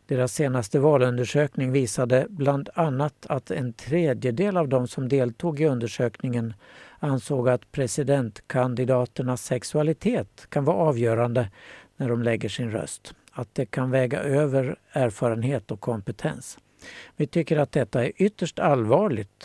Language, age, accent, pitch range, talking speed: Swedish, 60-79, native, 120-145 Hz, 130 wpm